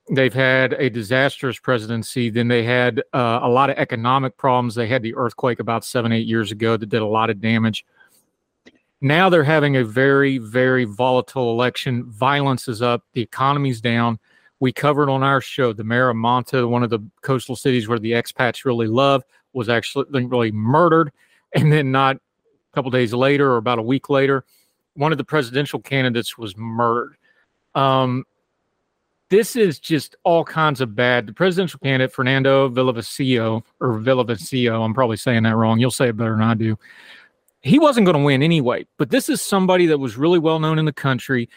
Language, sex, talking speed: English, male, 185 wpm